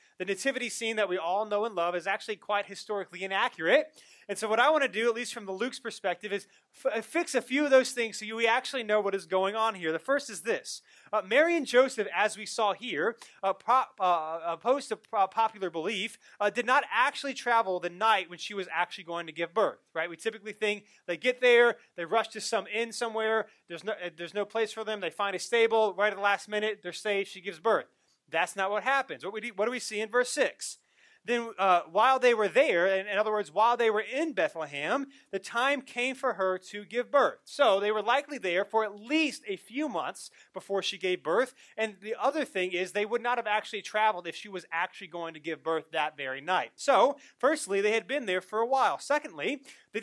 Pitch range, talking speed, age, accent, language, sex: 195-240 Hz, 240 wpm, 30-49, American, English, male